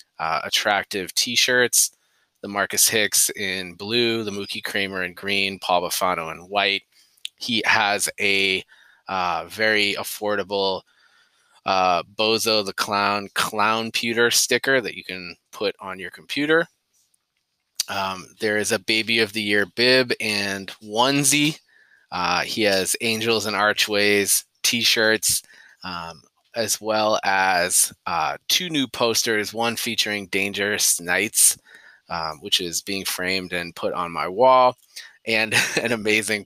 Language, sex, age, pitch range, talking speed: English, male, 20-39, 95-115 Hz, 135 wpm